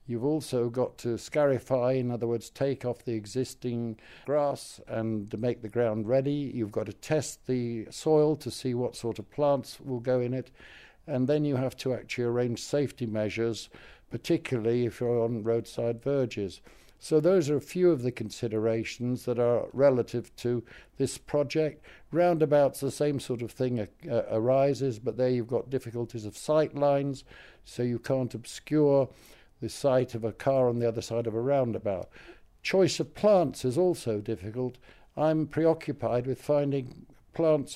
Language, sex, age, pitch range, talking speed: English, male, 60-79, 115-140 Hz, 165 wpm